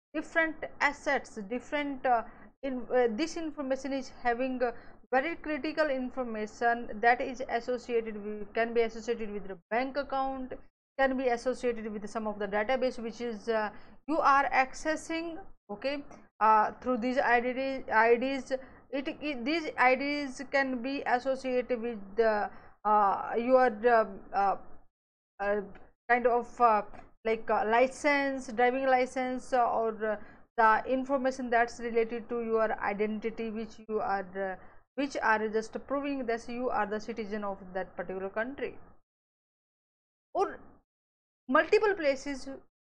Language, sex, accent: English, female, Indian